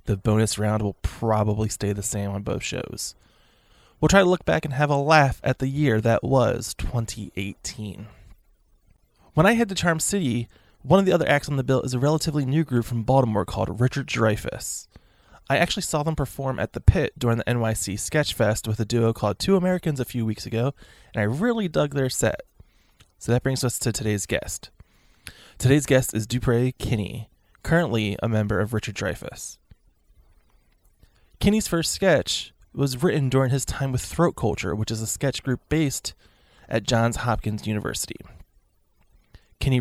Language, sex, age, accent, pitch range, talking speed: English, male, 20-39, American, 105-135 Hz, 180 wpm